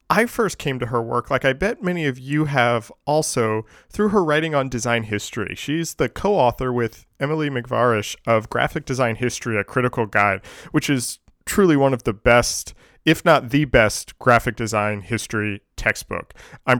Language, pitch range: English, 110-140 Hz